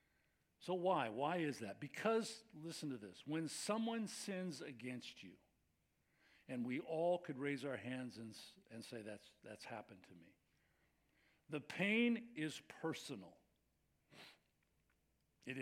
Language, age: English, 50-69